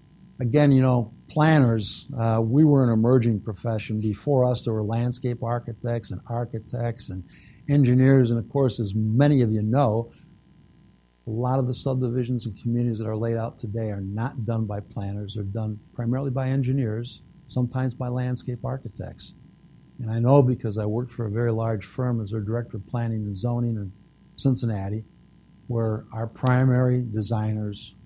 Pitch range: 110-130 Hz